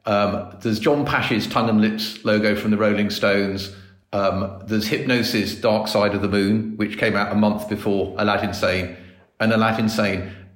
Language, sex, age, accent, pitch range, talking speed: English, male, 40-59, British, 95-115 Hz, 175 wpm